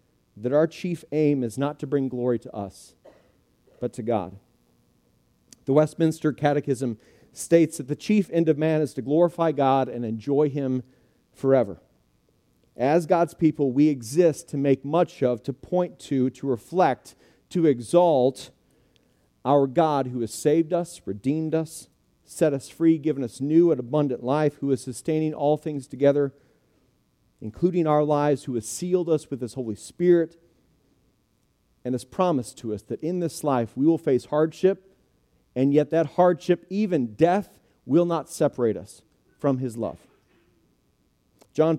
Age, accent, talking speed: 40-59, American, 155 wpm